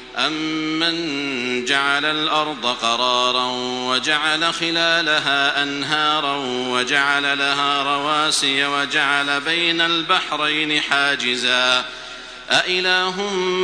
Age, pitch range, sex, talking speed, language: 50-69, 140-165 Hz, male, 65 wpm, Arabic